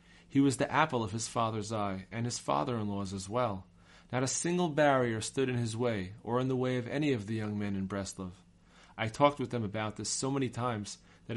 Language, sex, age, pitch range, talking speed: English, male, 40-59, 95-125 Hz, 225 wpm